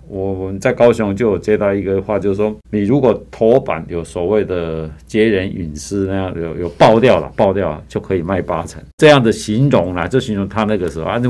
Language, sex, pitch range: Chinese, male, 85-110 Hz